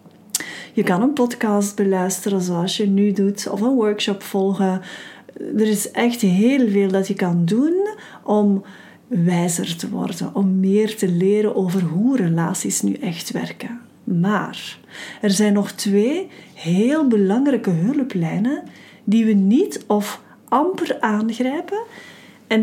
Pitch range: 195-250 Hz